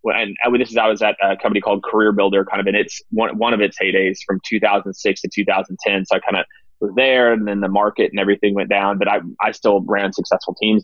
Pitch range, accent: 100-125 Hz, American